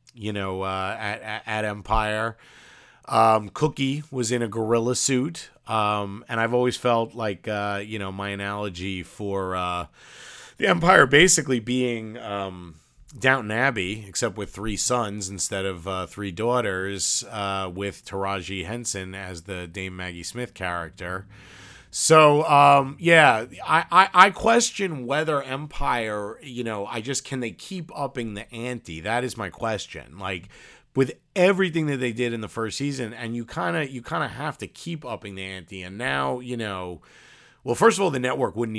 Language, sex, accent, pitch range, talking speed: English, male, American, 95-125 Hz, 170 wpm